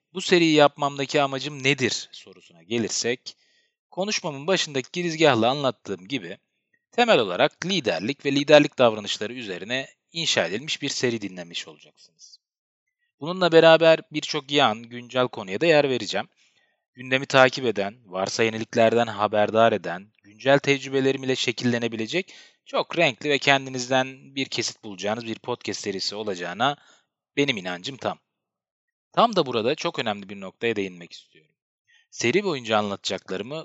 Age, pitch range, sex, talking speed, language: 30-49, 110-150 Hz, male, 125 wpm, Turkish